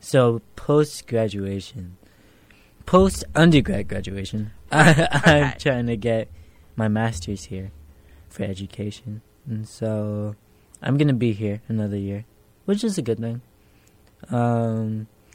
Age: 20-39